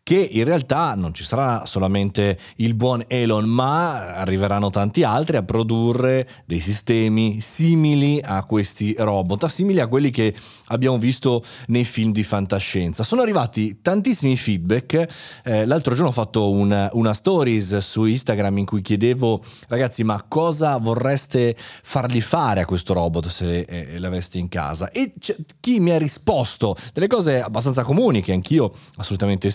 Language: Italian